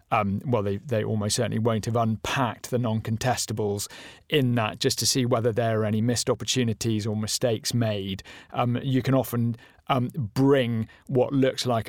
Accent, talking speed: British, 170 wpm